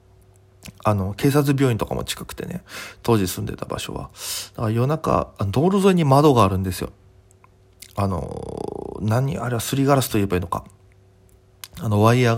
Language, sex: Japanese, male